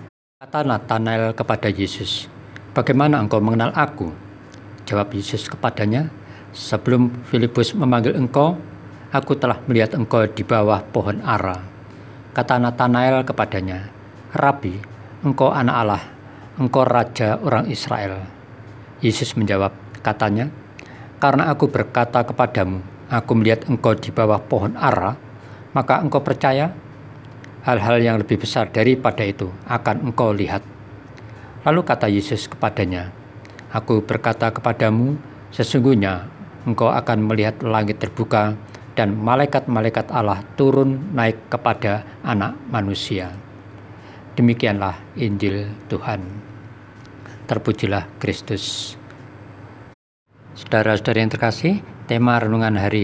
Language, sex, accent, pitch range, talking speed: Indonesian, male, native, 100-125 Hz, 105 wpm